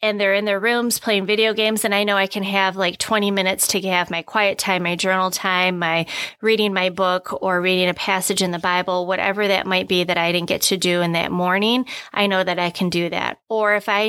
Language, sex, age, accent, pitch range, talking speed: English, female, 20-39, American, 185-225 Hz, 250 wpm